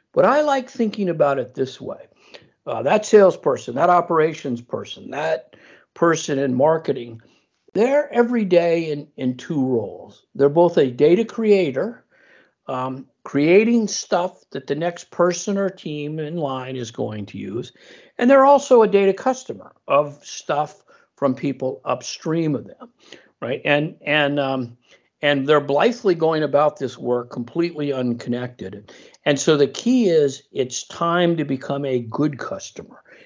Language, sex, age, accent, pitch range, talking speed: English, male, 60-79, American, 140-230 Hz, 150 wpm